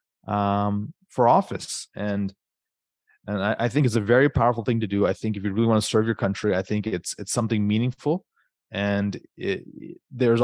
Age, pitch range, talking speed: 30-49, 100-120 Hz, 185 wpm